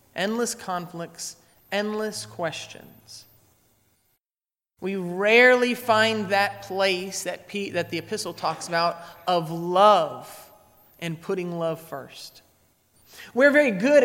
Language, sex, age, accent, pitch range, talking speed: English, male, 30-49, American, 150-225 Hz, 105 wpm